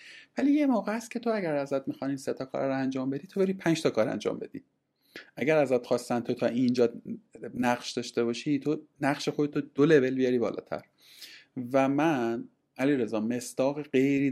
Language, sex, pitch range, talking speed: Persian, male, 115-150 Hz, 185 wpm